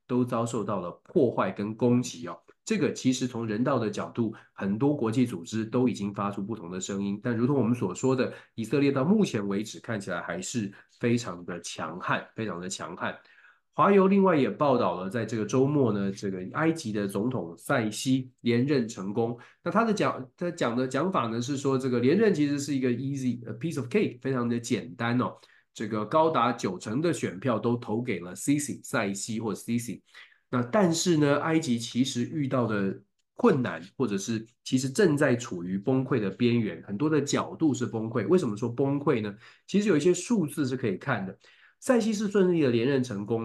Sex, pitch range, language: male, 115-155 Hz, Chinese